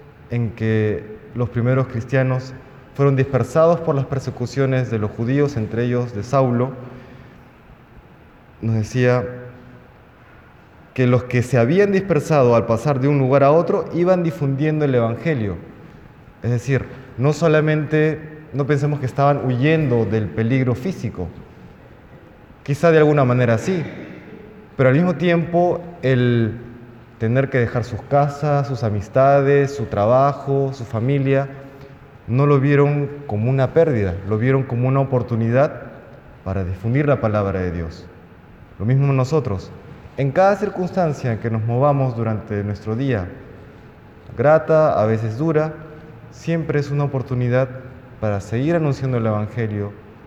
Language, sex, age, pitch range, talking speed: Spanish, male, 20-39, 110-140 Hz, 130 wpm